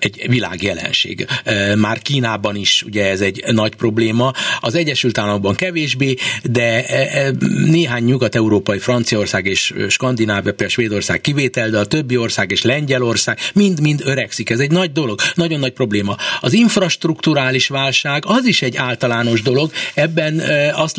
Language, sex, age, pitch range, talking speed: Hungarian, male, 60-79, 120-170 Hz, 135 wpm